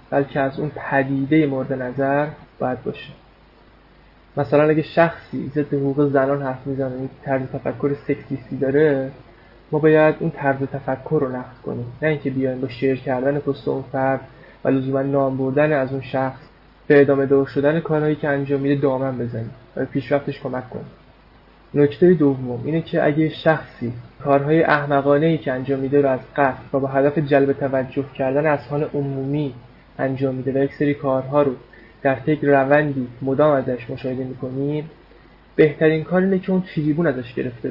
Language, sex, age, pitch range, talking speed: Persian, male, 20-39, 135-150 Hz, 160 wpm